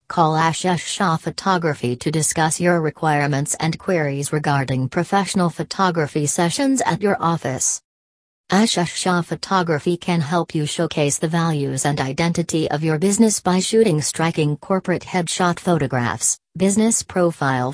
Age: 40-59